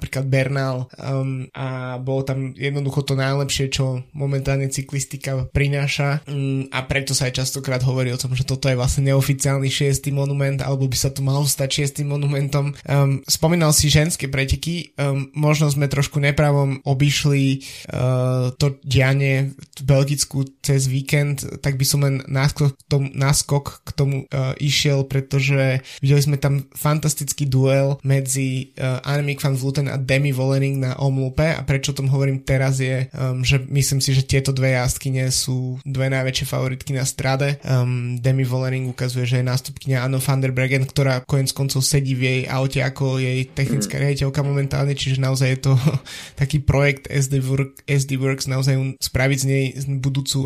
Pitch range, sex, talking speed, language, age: 130-140 Hz, male, 170 wpm, Slovak, 20-39